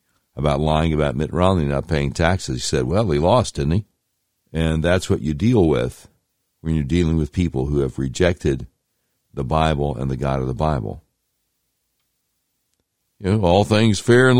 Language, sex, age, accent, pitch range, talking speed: English, male, 60-79, American, 75-105 Hz, 180 wpm